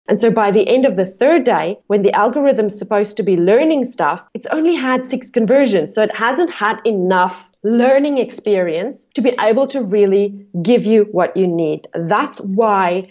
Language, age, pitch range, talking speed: English, 30-49, 195-245 Hz, 190 wpm